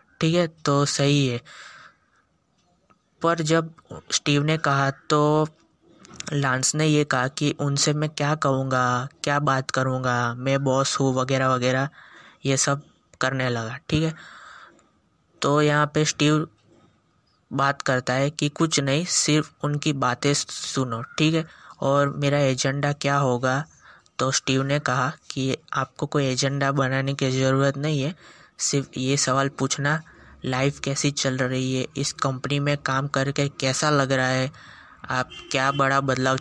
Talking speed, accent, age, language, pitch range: 150 wpm, native, 20-39, Hindi, 130-150 Hz